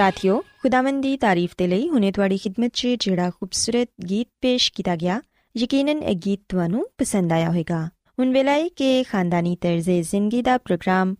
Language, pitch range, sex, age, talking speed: Punjabi, 180-270 Hz, female, 20-39, 160 wpm